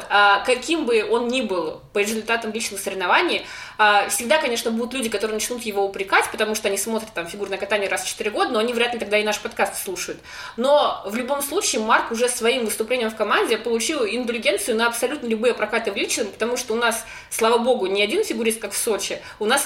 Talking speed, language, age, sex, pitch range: 210 wpm, Russian, 20-39, female, 205-245 Hz